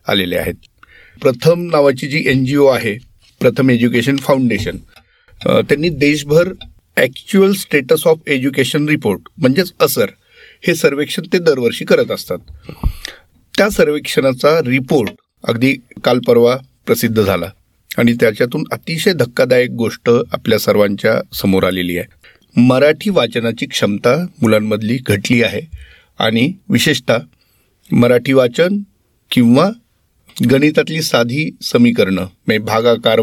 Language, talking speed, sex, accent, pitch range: Marathi, 90 wpm, male, native, 120-170 Hz